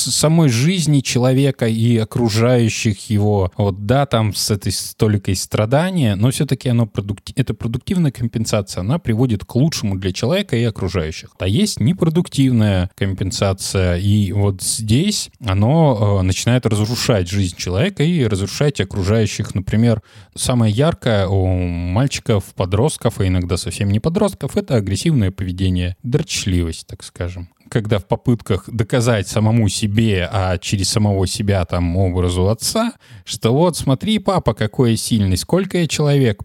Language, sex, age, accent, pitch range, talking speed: Russian, male, 20-39, native, 95-125 Hz, 140 wpm